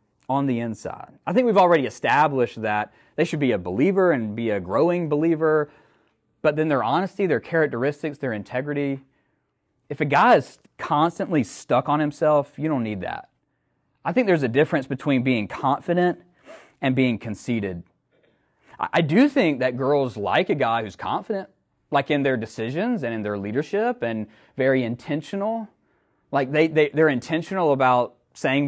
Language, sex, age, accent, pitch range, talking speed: English, male, 30-49, American, 120-170 Hz, 160 wpm